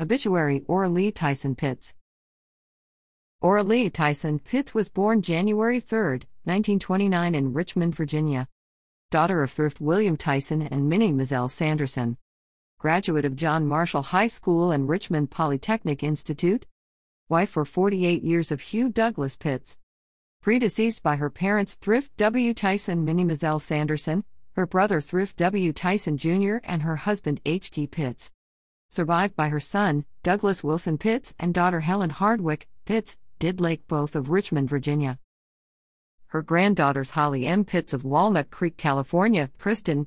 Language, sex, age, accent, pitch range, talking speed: English, female, 40-59, American, 145-200 Hz, 140 wpm